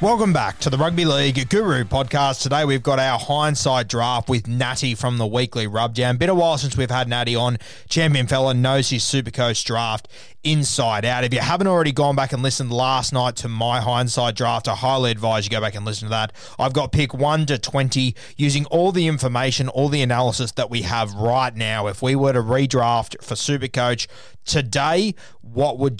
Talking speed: 205 wpm